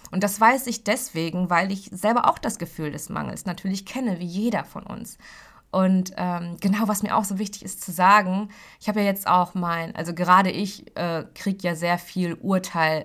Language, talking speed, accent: German, 205 wpm, German